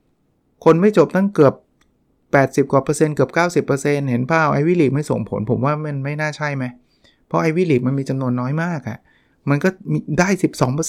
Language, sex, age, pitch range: Thai, male, 20-39, 120-150 Hz